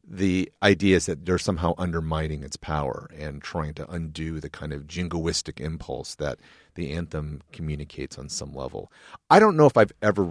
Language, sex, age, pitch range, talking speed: English, male, 40-59, 75-95 Hz, 180 wpm